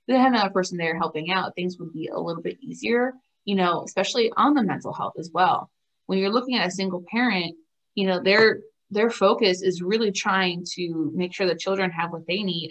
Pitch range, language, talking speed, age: 180-215 Hz, English, 215 wpm, 20-39